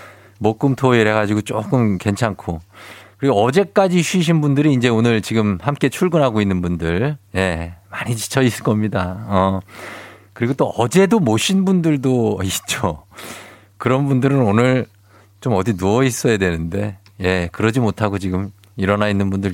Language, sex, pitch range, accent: Korean, male, 100-140 Hz, native